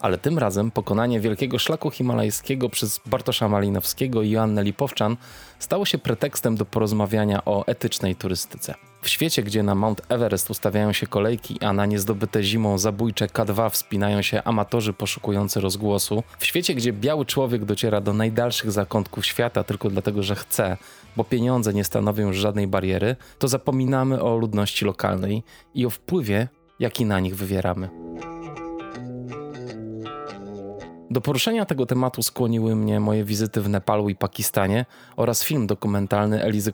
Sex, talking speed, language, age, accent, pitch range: male, 145 wpm, Polish, 20-39, native, 100-120 Hz